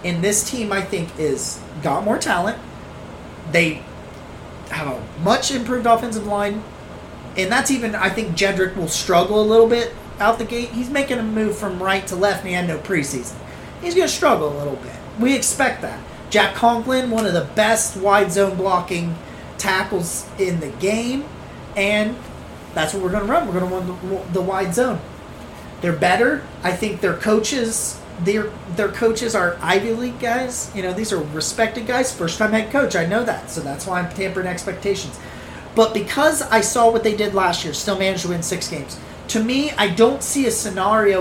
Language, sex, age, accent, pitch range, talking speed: English, male, 30-49, American, 185-230 Hz, 195 wpm